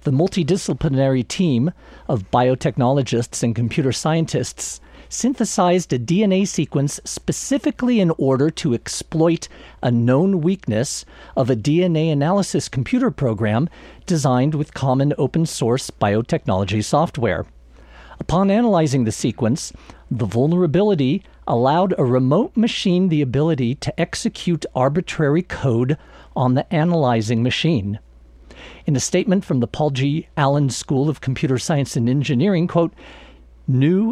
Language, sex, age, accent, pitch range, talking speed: English, male, 50-69, American, 120-170 Hz, 120 wpm